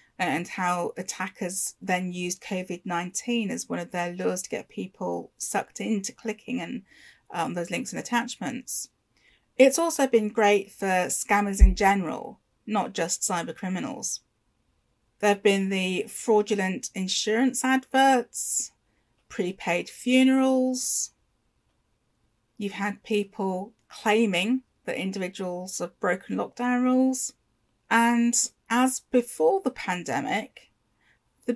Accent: British